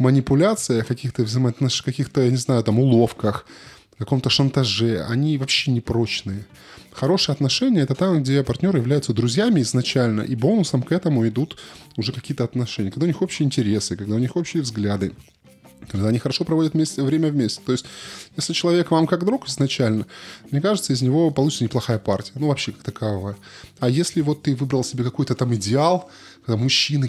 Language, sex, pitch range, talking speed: Russian, male, 120-155 Hz, 175 wpm